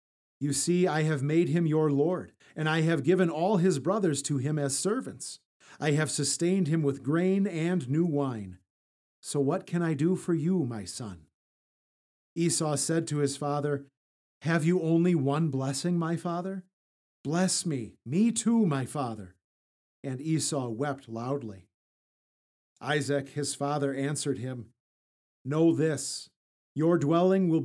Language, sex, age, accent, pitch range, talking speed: English, male, 40-59, American, 125-165 Hz, 150 wpm